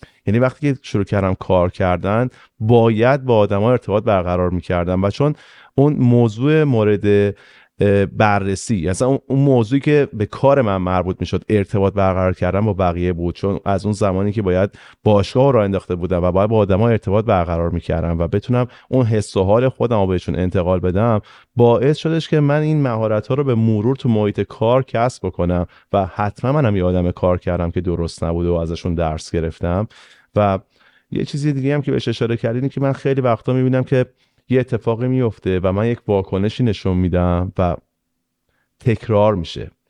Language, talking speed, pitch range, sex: Persian, 175 wpm, 95-125 Hz, male